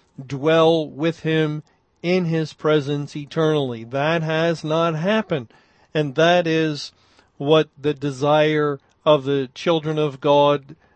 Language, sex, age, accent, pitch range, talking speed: English, male, 50-69, American, 145-175 Hz, 120 wpm